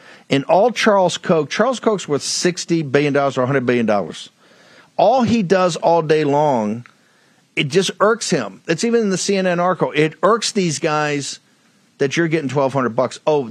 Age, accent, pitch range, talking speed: 50-69, American, 140-175 Hz, 160 wpm